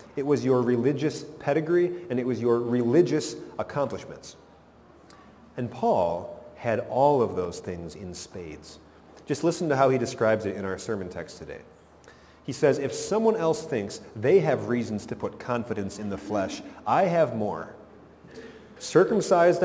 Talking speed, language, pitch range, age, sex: 155 wpm, English, 115-160 Hz, 30-49, male